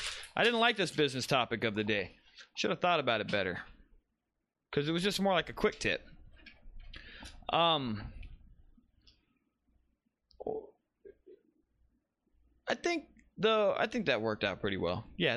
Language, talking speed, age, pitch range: English, 140 wpm, 20-39, 145-240 Hz